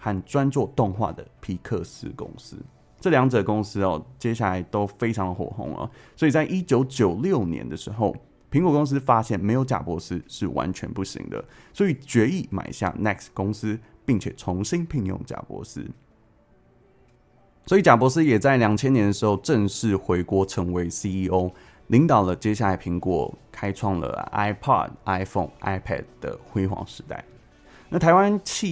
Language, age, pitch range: Chinese, 20-39, 95-135 Hz